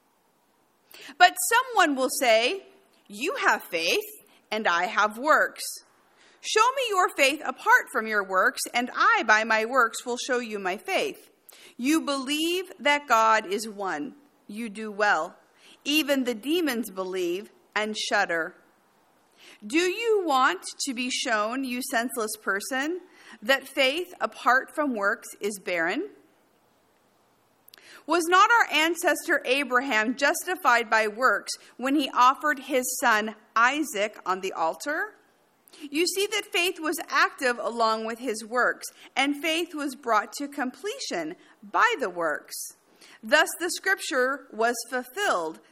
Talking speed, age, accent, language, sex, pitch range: 135 wpm, 50-69, American, English, female, 220-340 Hz